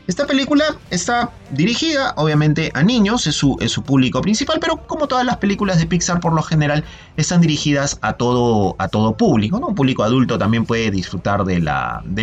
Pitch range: 110-160 Hz